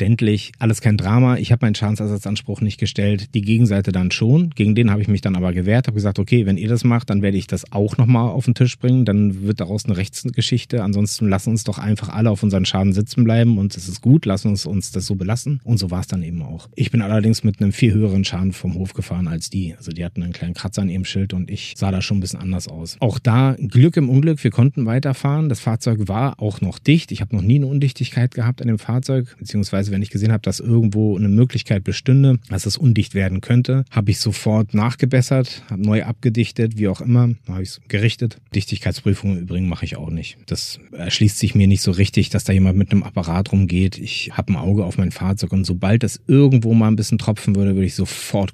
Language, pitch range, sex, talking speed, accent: German, 95-115 Hz, male, 240 wpm, German